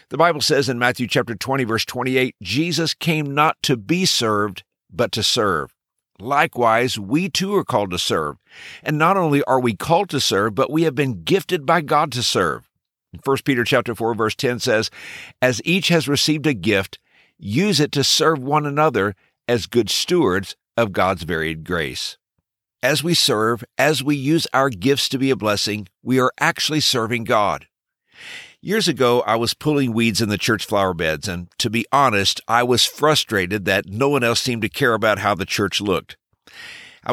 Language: English